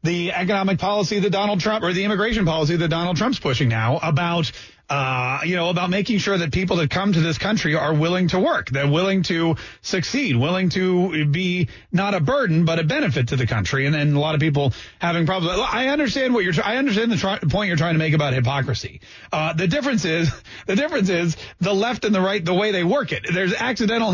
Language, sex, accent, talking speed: English, male, American, 225 wpm